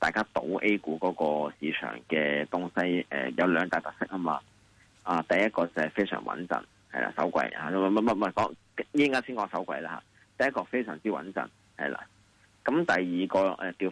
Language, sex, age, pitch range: Chinese, male, 30-49, 80-105 Hz